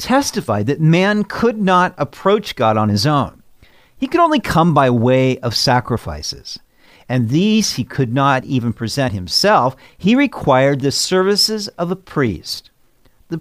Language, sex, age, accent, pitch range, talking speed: English, male, 50-69, American, 120-180 Hz, 150 wpm